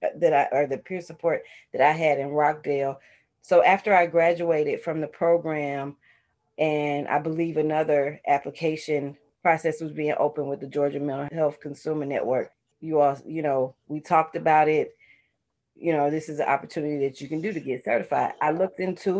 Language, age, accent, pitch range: English, 30-49, American, 145-170 Hz